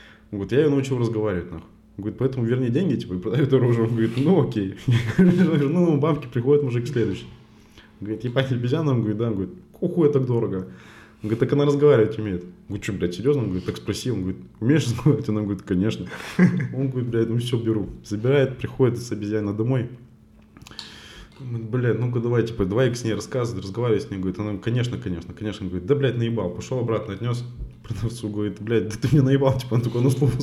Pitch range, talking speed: 110-135 Hz, 195 wpm